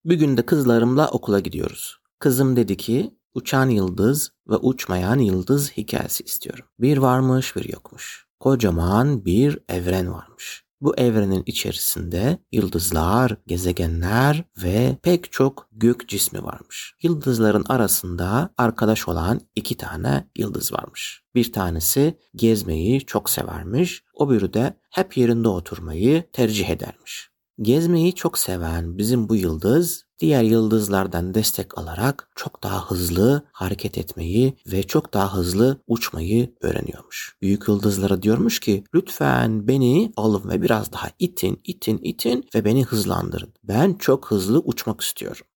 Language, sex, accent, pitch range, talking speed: Turkish, male, native, 95-135 Hz, 130 wpm